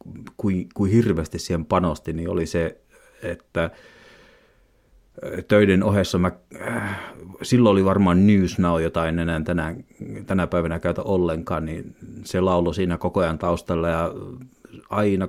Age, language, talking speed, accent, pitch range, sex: 30-49, Finnish, 130 wpm, native, 85-95 Hz, male